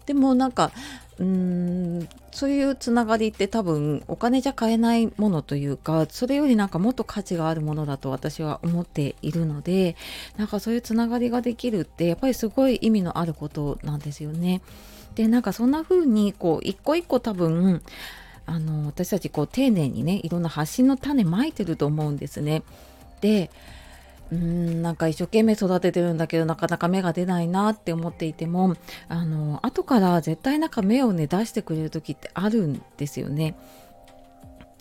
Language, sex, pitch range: Japanese, female, 160-230 Hz